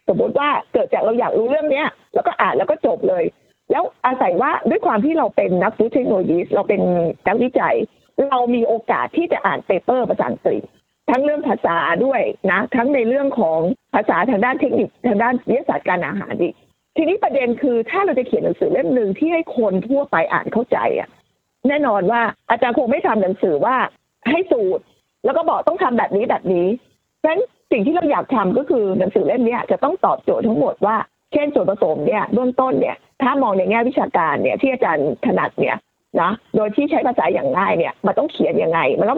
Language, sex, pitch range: Thai, female, 225-295 Hz